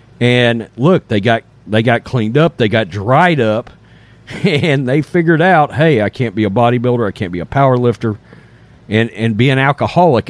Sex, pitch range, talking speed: male, 110-145 Hz, 185 wpm